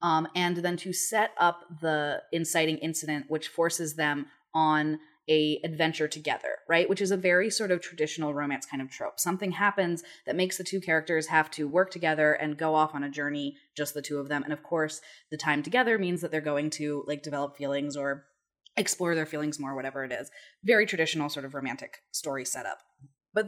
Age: 20-39